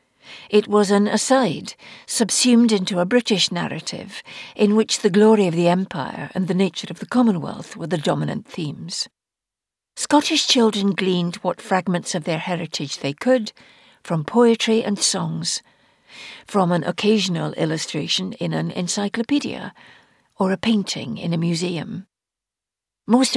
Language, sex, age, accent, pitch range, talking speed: English, female, 60-79, British, 170-225 Hz, 140 wpm